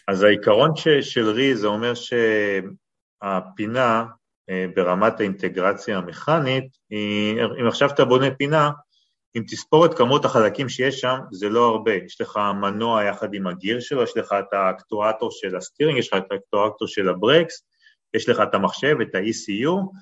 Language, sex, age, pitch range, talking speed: Hebrew, male, 40-59, 100-145 Hz, 155 wpm